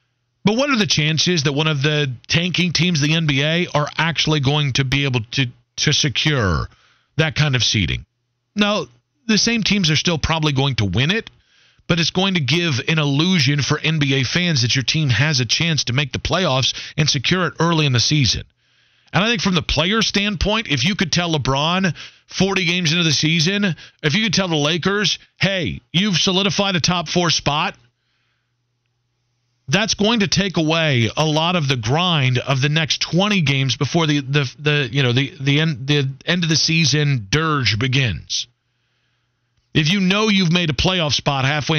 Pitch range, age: 125-175 Hz, 40-59